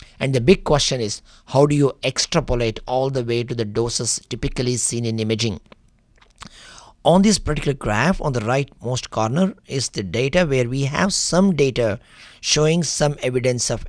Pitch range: 115-150 Hz